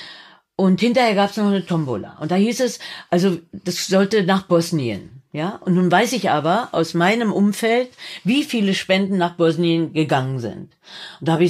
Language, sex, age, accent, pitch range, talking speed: German, female, 50-69, German, 175-220 Hz, 190 wpm